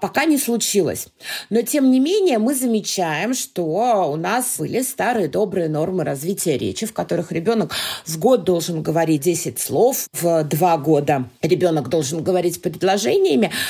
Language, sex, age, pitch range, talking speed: Russian, female, 30-49, 165-225 Hz, 150 wpm